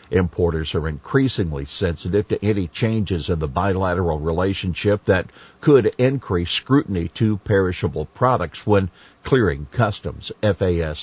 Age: 50-69